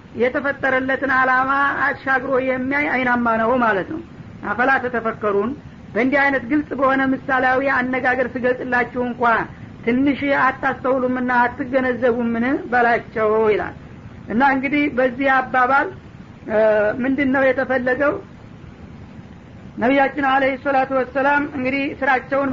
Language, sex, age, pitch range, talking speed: Amharic, female, 50-69, 250-275 Hz, 100 wpm